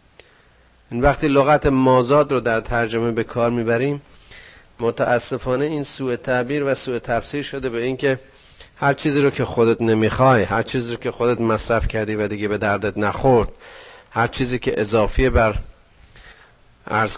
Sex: male